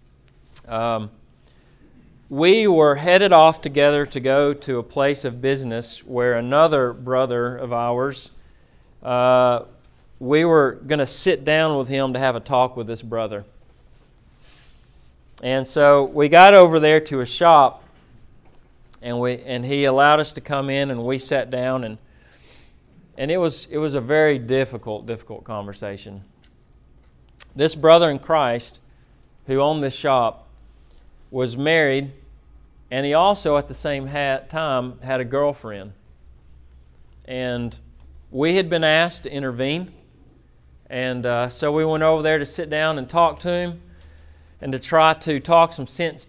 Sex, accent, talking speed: male, American, 150 wpm